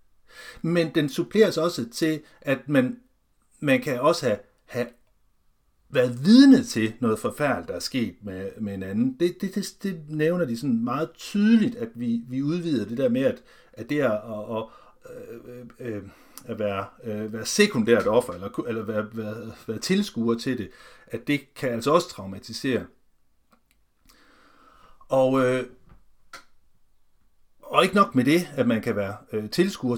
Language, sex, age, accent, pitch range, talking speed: Danish, male, 60-79, native, 110-165 Hz, 160 wpm